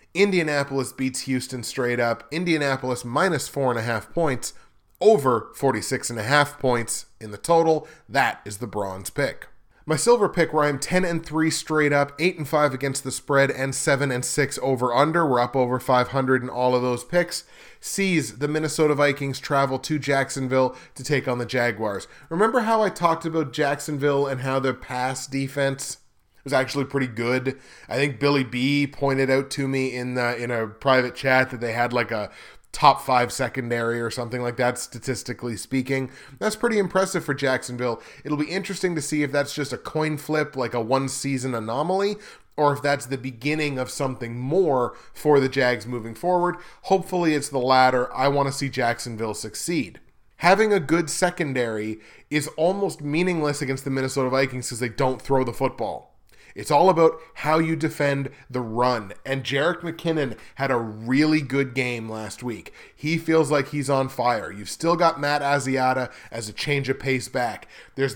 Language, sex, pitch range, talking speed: English, male, 125-150 Hz, 185 wpm